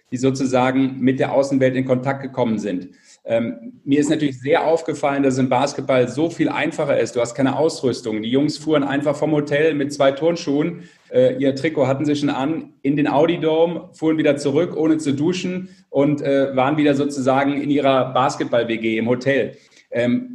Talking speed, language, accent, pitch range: 185 wpm, German, German, 130-160 Hz